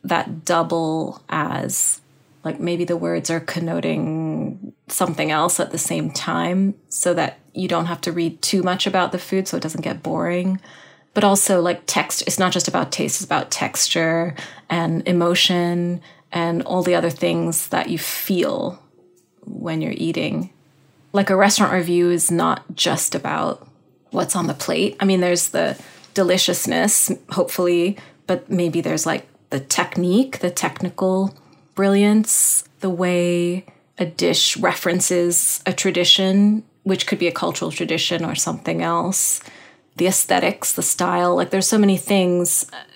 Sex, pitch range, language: female, 170-185 Hz, English